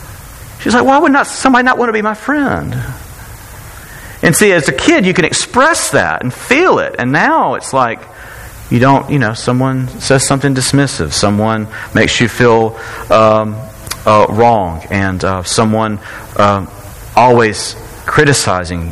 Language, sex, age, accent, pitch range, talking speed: English, male, 40-59, American, 100-125 Hz, 155 wpm